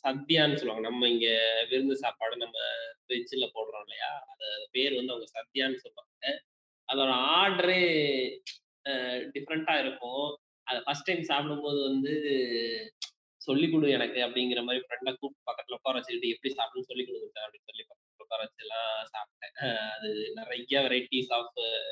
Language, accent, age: Tamil, native, 20-39